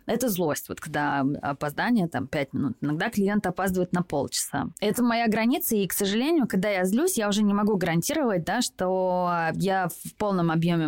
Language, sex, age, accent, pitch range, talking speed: Russian, female, 20-39, native, 170-210 Hz, 180 wpm